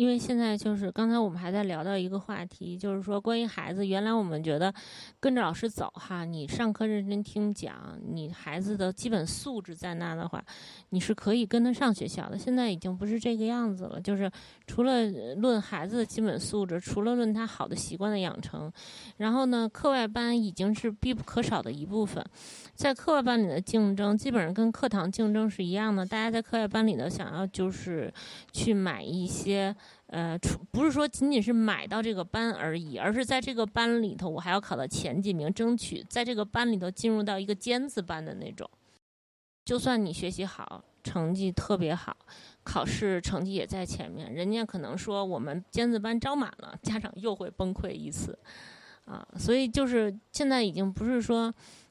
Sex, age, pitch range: female, 20-39, 185-230 Hz